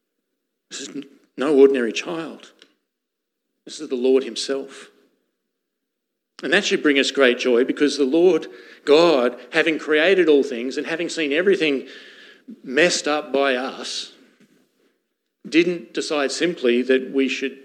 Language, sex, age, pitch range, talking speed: English, male, 50-69, 125-155 Hz, 135 wpm